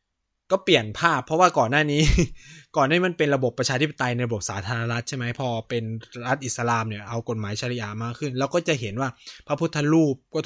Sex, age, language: male, 20-39, Thai